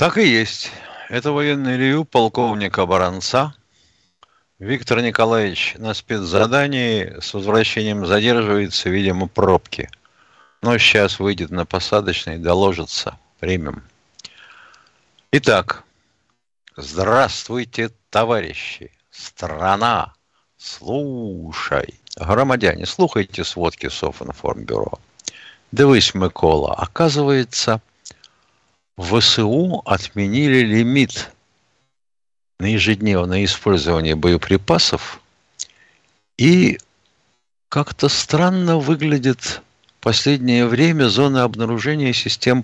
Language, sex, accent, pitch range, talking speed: Russian, male, native, 100-130 Hz, 75 wpm